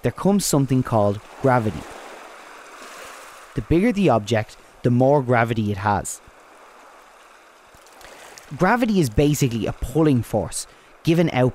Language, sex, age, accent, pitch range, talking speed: English, male, 30-49, Irish, 110-145 Hz, 115 wpm